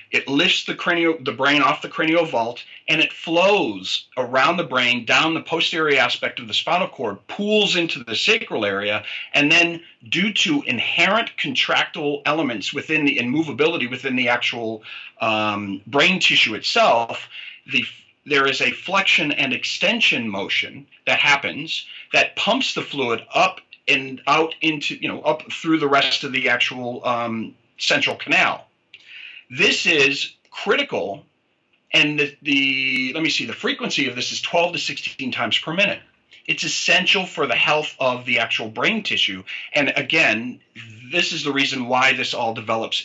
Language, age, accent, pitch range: English, 40-59, American, 125-170 Hz